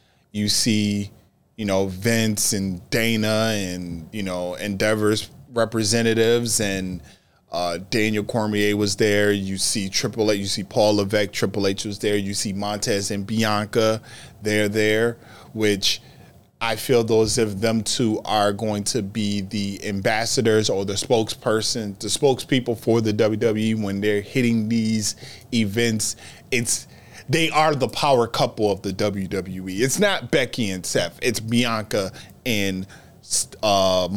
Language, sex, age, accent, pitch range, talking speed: English, male, 20-39, American, 105-130 Hz, 140 wpm